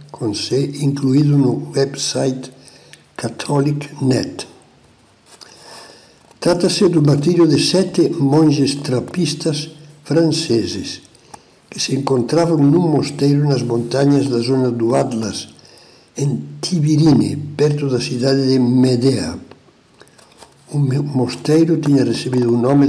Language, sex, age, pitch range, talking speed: Portuguese, male, 60-79, 125-150 Hz, 100 wpm